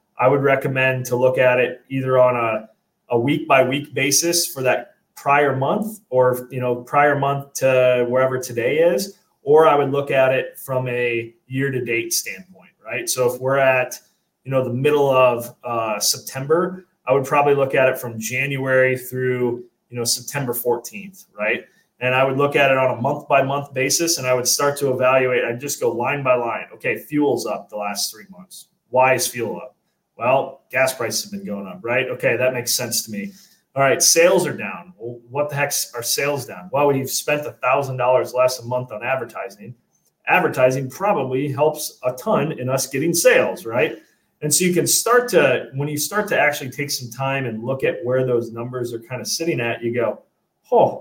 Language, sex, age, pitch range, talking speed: English, male, 30-49, 125-150 Hz, 205 wpm